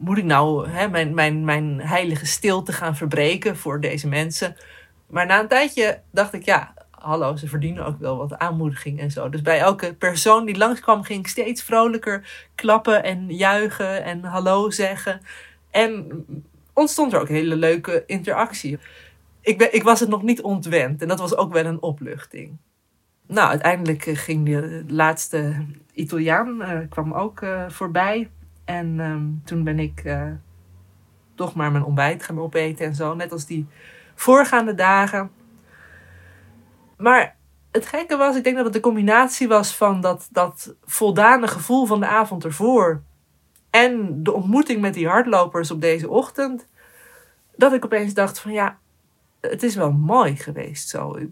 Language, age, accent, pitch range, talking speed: Dutch, 20-39, Dutch, 155-215 Hz, 165 wpm